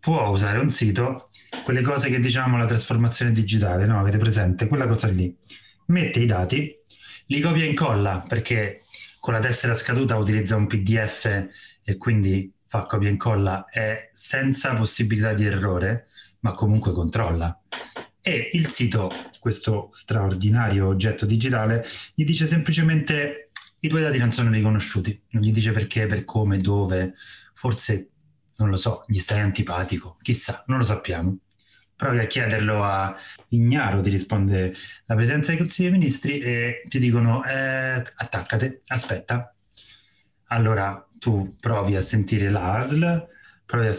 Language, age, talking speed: Italian, 30-49, 145 wpm